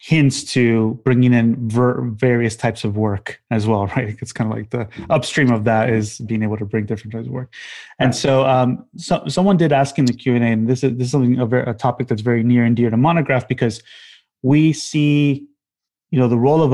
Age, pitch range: 30-49, 120-140 Hz